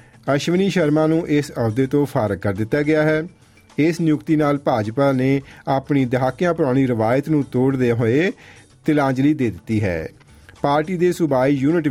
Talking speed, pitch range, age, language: 155 wpm, 120-155 Hz, 40-59, Punjabi